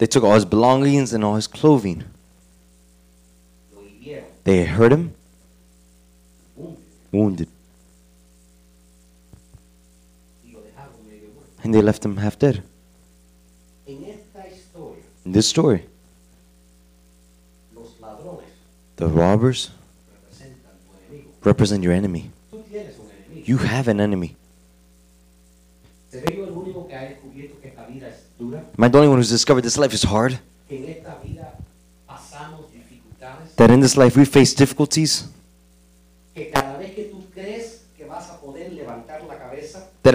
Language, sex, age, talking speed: Spanish, male, 20-39, 75 wpm